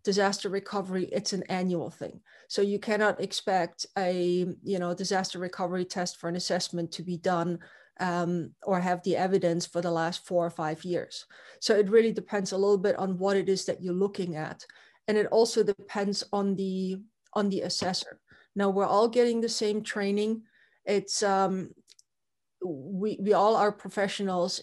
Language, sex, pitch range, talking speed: English, female, 180-200 Hz, 175 wpm